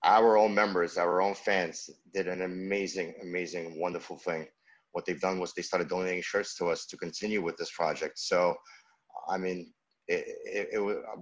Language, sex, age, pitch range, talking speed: English, male, 30-49, 90-105 Hz, 180 wpm